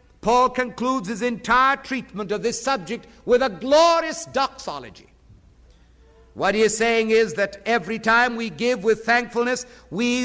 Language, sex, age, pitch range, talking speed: English, male, 50-69, 175-255 Hz, 145 wpm